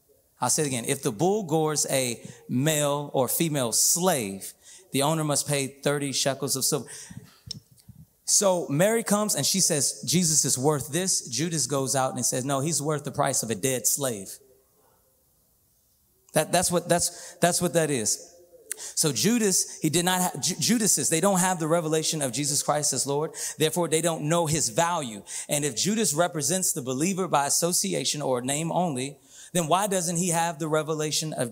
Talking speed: 185 wpm